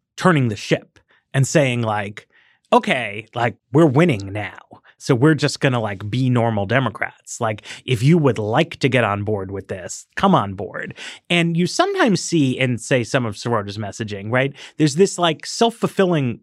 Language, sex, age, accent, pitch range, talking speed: English, male, 30-49, American, 130-190 Hz, 180 wpm